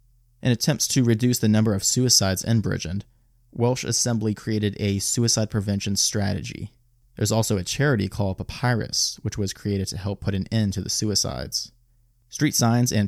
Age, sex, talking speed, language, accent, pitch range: 30-49, male, 170 wpm, English, American, 100-120 Hz